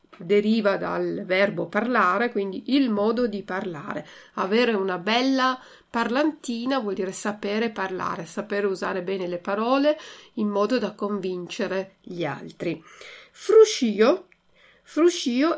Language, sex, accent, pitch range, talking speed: Italian, female, native, 190-240 Hz, 115 wpm